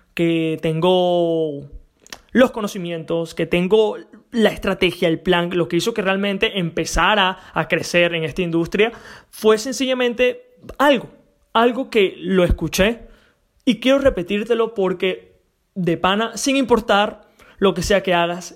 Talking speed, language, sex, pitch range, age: 135 wpm, Spanish, male, 175-225 Hz, 20-39